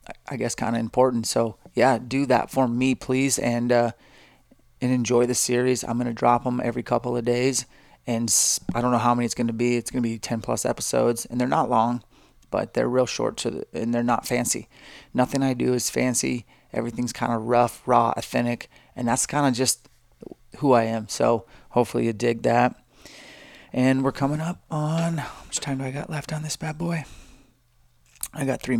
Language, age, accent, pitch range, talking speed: English, 30-49, American, 115-125 Hz, 210 wpm